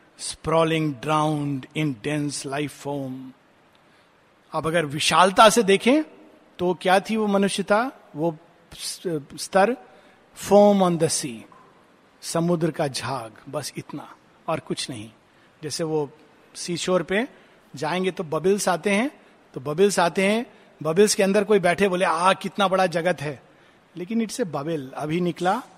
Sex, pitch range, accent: male, 155-195 Hz, native